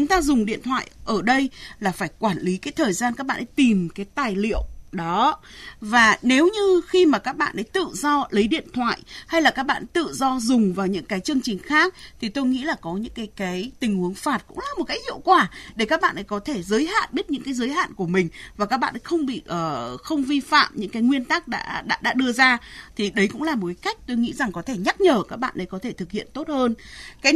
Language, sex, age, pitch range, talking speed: Vietnamese, female, 20-39, 205-290 Hz, 270 wpm